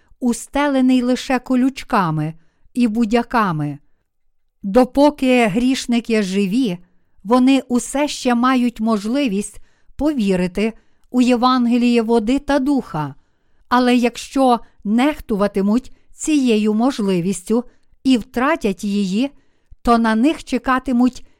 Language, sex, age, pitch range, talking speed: Ukrainian, female, 50-69, 210-255 Hz, 85 wpm